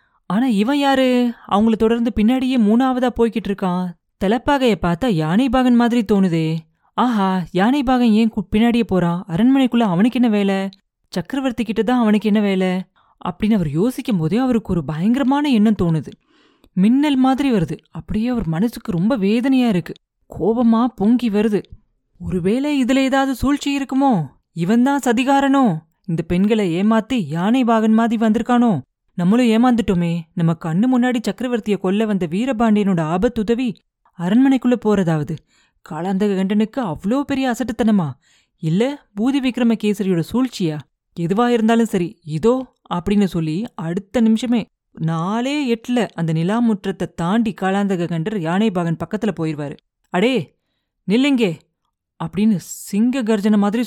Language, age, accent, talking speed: Tamil, 30-49, native, 115 wpm